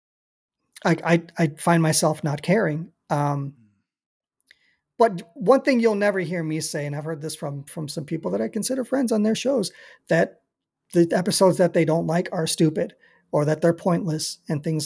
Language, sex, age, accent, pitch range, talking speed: English, male, 40-59, American, 155-180 Hz, 185 wpm